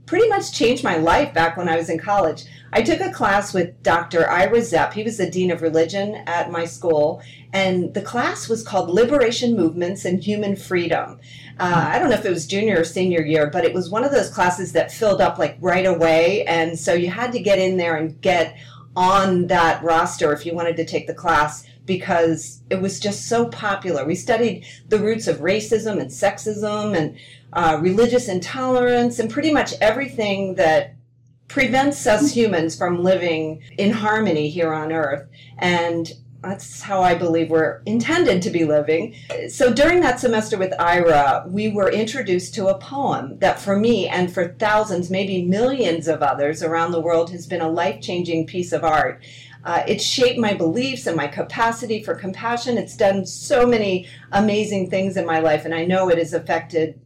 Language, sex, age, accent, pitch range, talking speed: English, female, 40-59, American, 165-210 Hz, 190 wpm